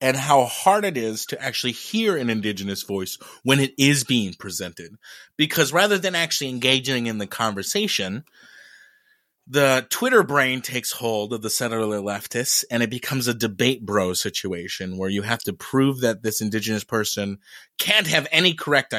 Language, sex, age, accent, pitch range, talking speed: English, male, 30-49, American, 110-160 Hz, 170 wpm